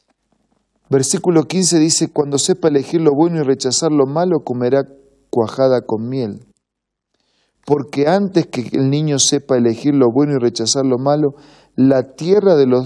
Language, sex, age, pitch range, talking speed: Spanish, male, 40-59, 125-150 Hz, 155 wpm